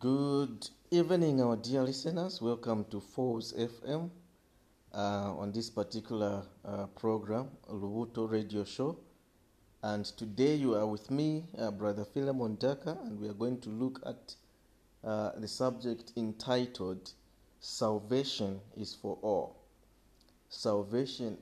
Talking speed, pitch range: 125 wpm, 100-125 Hz